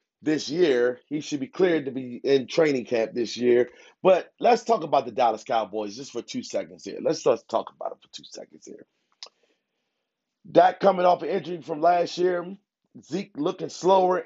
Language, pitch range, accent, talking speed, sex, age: English, 135-195 Hz, American, 190 wpm, male, 30-49